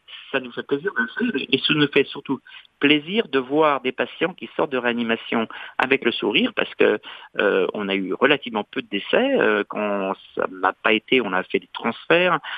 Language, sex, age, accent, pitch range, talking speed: French, male, 50-69, French, 110-165 Hz, 195 wpm